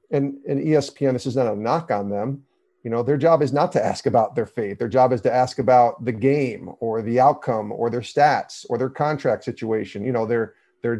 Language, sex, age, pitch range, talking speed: English, male, 40-59, 115-135 Hz, 235 wpm